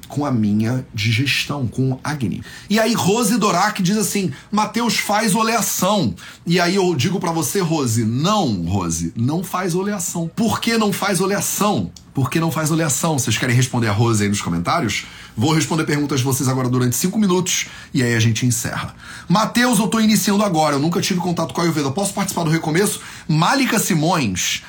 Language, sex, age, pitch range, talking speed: Portuguese, male, 30-49, 125-185 Hz, 185 wpm